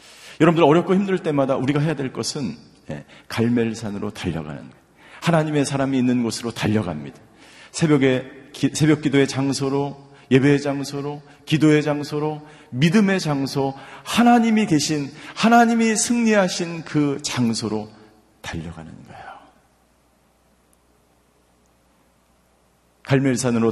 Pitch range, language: 100-155 Hz, Korean